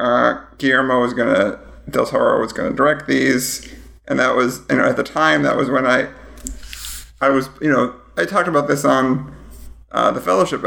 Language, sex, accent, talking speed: English, male, American, 200 wpm